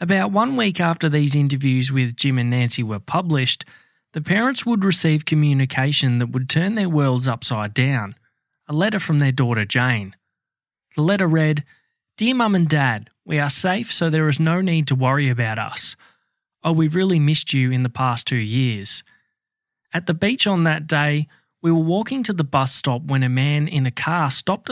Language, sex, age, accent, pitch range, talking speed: English, male, 20-39, Australian, 130-170 Hz, 190 wpm